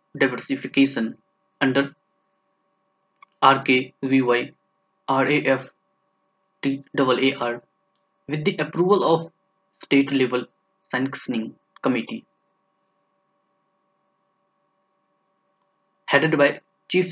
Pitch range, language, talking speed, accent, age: 130-155 Hz, English, 50 wpm, Indian, 20-39